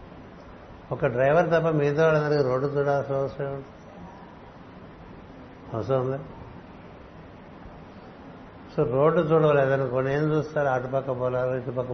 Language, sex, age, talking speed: Telugu, male, 60-79, 105 wpm